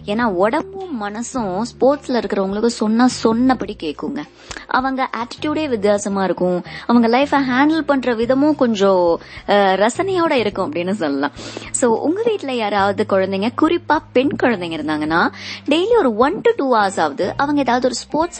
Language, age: Tamil, 20-39